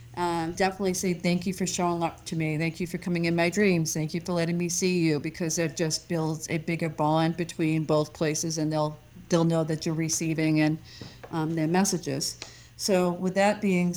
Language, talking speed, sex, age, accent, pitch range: English, 210 wpm, female, 40-59, American, 165-210 Hz